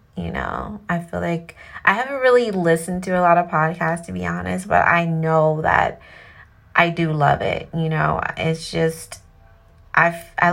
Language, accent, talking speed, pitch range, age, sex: English, American, 170 wpm, 155-180 Hz, 30-49, female